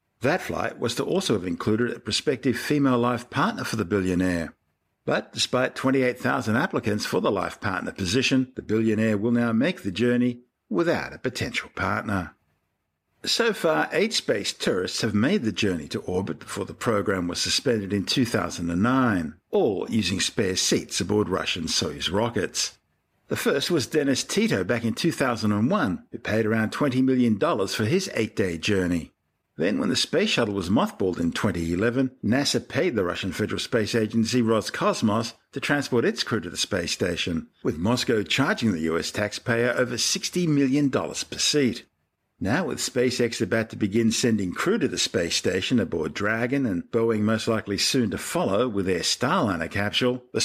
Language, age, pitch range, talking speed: English, 60-79, 100-125 Hz, 165 wpm